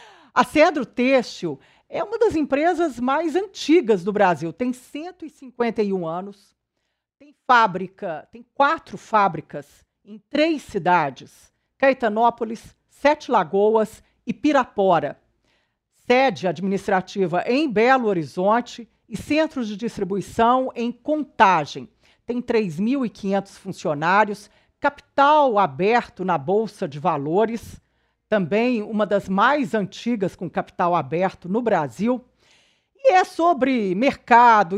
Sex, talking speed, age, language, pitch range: female, 105 wpm, 50-69, Portuguese, 195-255 Hz